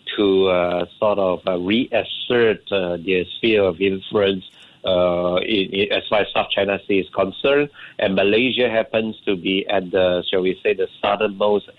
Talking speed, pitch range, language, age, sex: 175 wpm, 95-110 Hz, English, 60-79, male